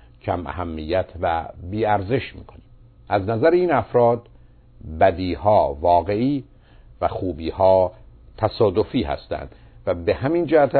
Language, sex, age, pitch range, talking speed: Persian, male, 50-69, 90-120 Hz, 105 wpm